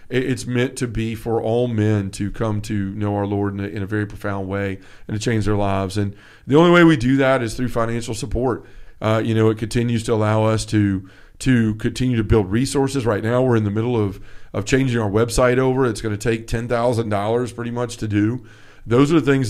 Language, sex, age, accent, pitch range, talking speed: English, male, 40-59, American, 105-125 Hz, 230 wpm